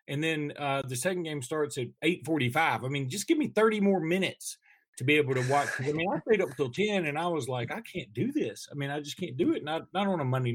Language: English